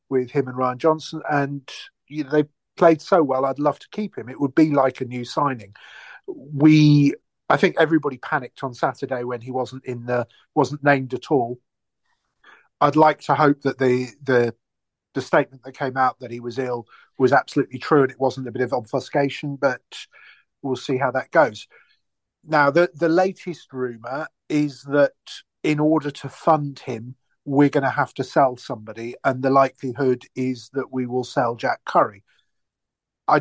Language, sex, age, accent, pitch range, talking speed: English, male, 40-59, British, 130-155 Hz, 185 wpm